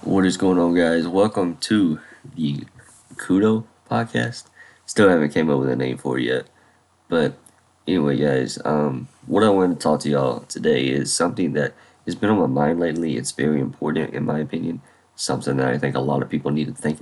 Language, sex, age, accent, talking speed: English, male, 20-39, American, 205 wpm